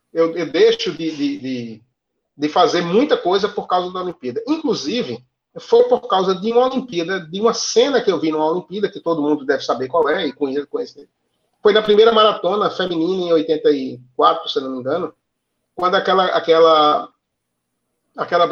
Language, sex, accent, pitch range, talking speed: Portuguese, male, Brazilian, 165-245 Hz, 170 wpm